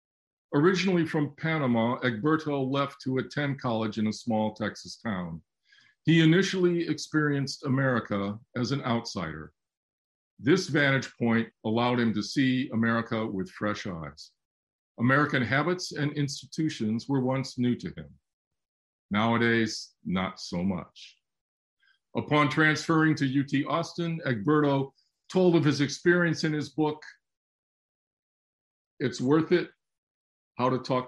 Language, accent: English, American